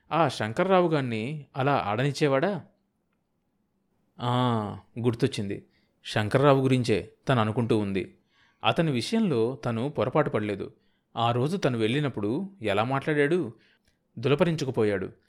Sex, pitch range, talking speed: male, 115-160 Hz, 85 wpm